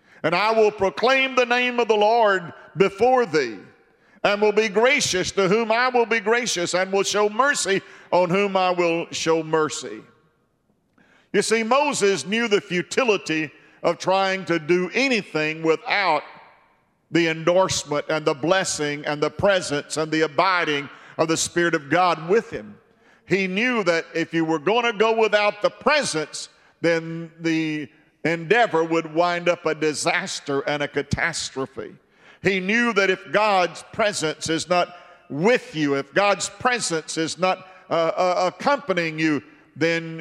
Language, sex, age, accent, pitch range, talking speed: English, male, 50-69, American, 155-200 Hz, 155 wpm